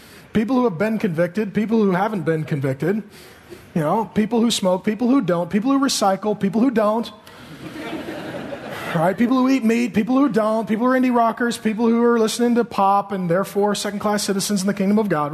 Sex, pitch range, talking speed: male, 180-235 Hz, 205 wpm